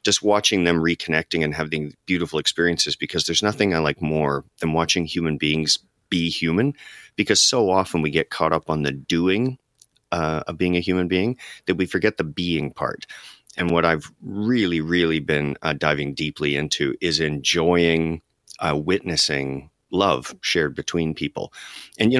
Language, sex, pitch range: English, male, 75-90 Hz